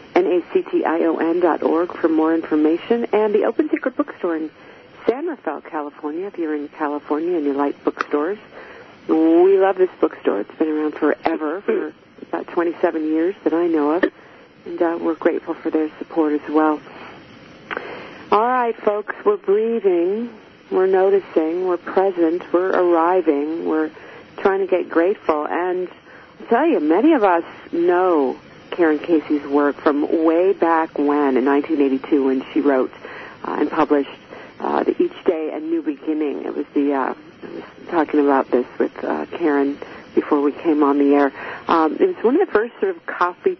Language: English